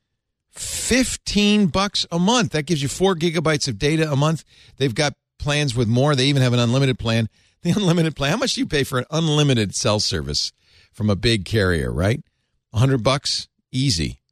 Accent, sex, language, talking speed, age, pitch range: American, male, English, 190 wpm, 50-69, 105-150 Hz